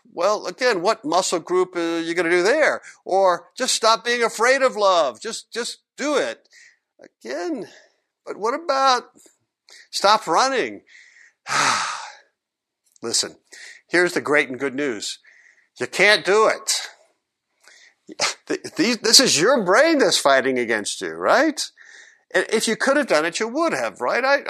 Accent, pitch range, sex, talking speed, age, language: American, 170-270 Hz, male, 145 wpm, 50-69, English